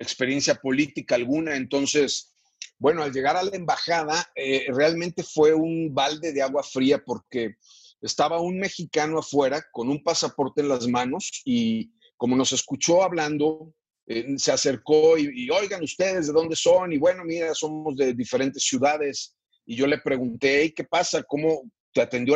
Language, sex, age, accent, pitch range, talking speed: Spanish, male, 50-69, Mexican, 130-160 Hz, 160 wpm